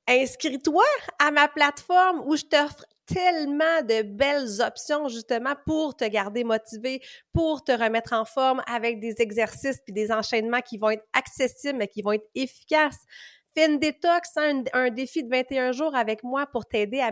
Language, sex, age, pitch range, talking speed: French, female, 30-49, 220-275 Hz, 180 wpm